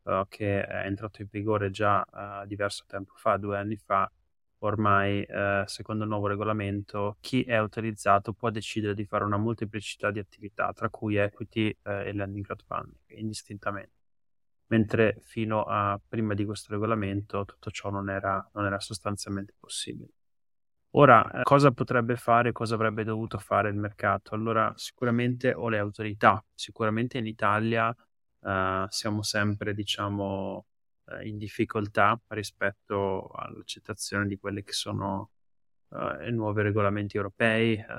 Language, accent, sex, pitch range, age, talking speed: Italian, native, male, 100-110 Hz, 20-39, 135 wpm